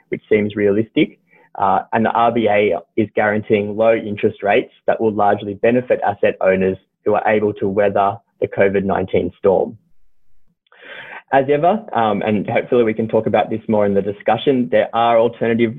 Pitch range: 105-125 Hz